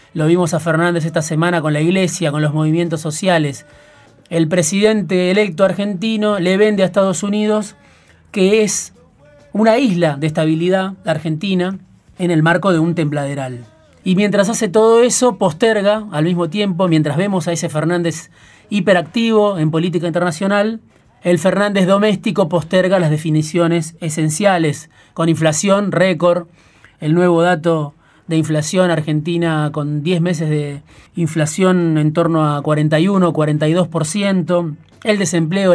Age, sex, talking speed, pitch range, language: 30-49, male, 135 wpm, 160-195 Hz, Spanish